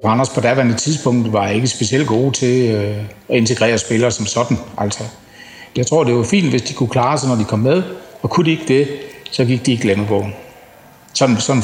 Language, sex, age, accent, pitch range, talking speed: Danish, male, 60-79, native, 110-130 Hz, 220 wpm